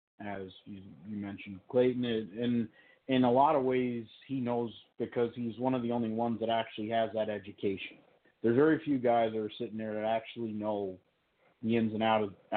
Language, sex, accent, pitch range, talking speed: English, male, American, 105-115 Hz, 190 wpm